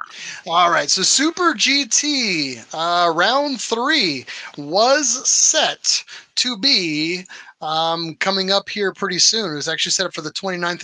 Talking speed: 145 wpm